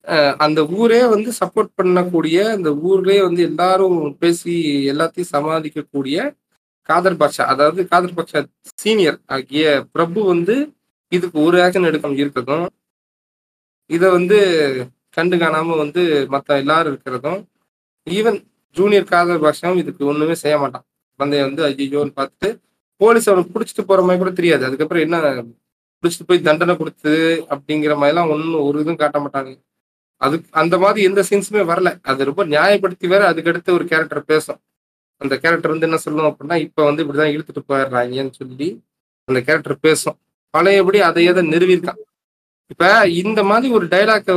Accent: native